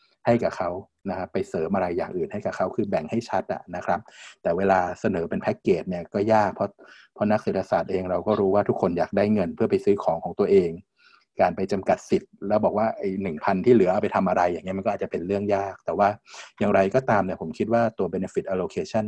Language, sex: Thai, male